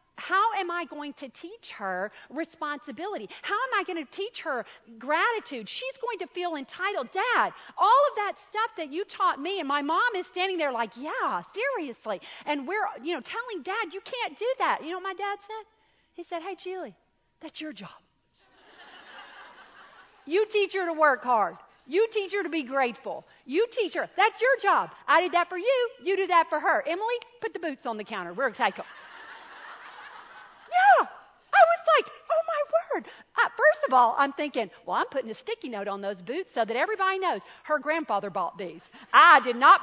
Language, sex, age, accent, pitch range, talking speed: English, female, 40-59, American, 270-400 Hz, 195 wpm